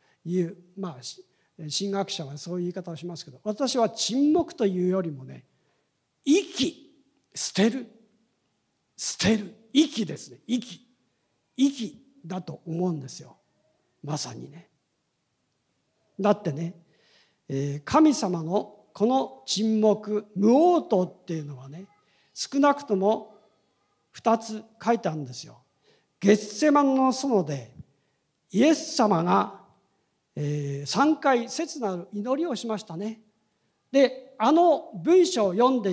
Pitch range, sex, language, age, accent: 165-250 Hz, male, Japanese, 50-69, native